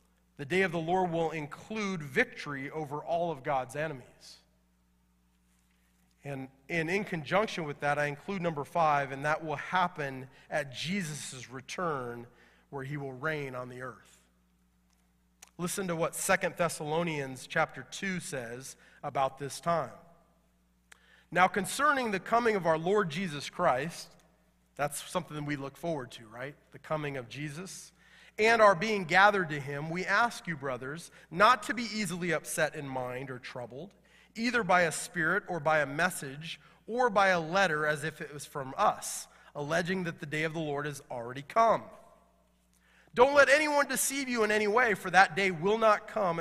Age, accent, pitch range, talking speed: 30-49, American, 135-185 Hz, 165 wpm